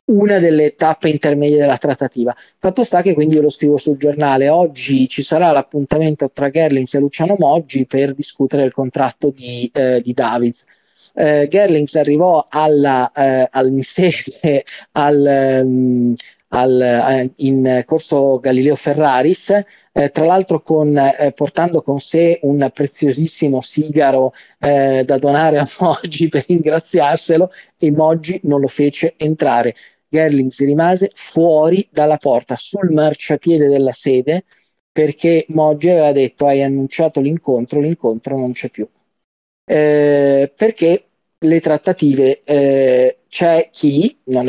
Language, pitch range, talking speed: Italian, 135-160 Hz, 130 wpm